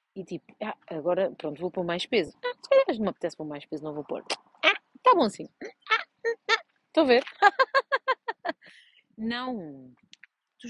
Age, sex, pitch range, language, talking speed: 30-49, female, 195-265 Hz, Portuguese, 185 wpm